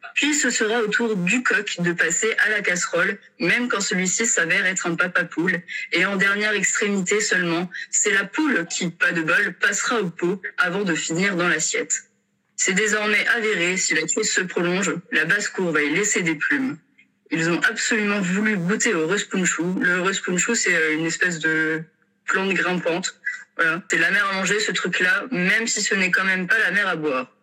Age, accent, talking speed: 20-39, French, 195 wpm